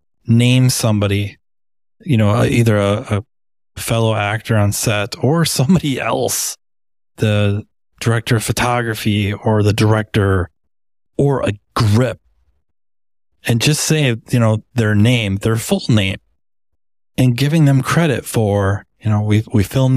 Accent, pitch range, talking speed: American, 105-125 Hz, 130 wpm